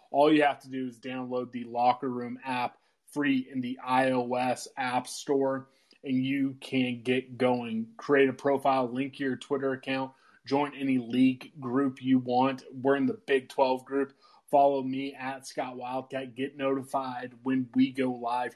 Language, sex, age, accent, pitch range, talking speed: English, male, 20-39, American, 125-140 Hz, 170 wpm